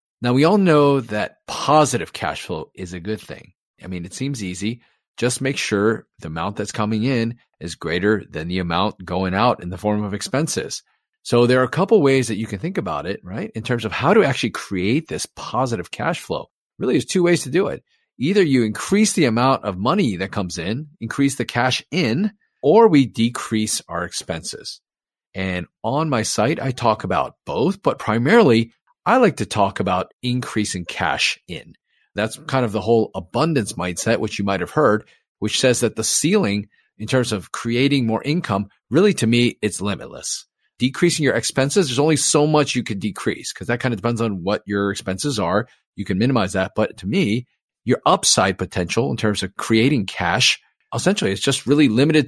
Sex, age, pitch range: male, 40-59, 105-135 Hz